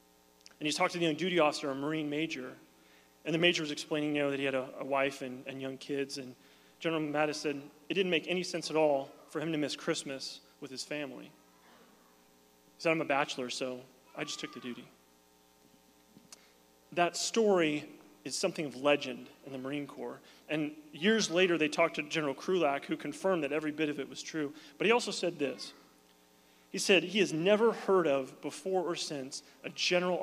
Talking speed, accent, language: 200 wpm, American, English